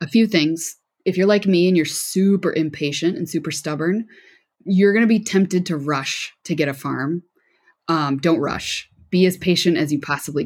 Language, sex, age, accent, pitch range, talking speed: English, female, 20-39, American, 150-190 Hz, 190 wpm